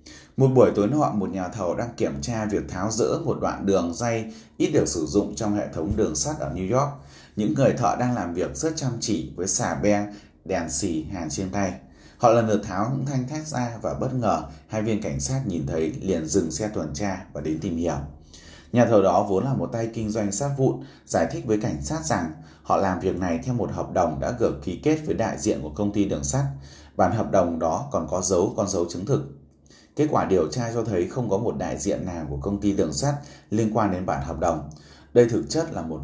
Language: Vietnamese